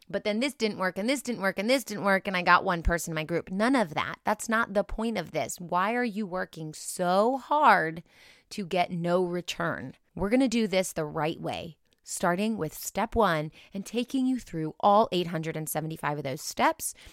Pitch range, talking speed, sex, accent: 170-225 Hz, 215 wpm, female, American